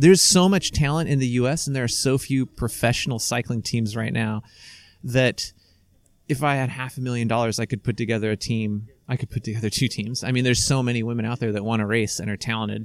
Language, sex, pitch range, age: English, male, 110-135 Hz, 30-49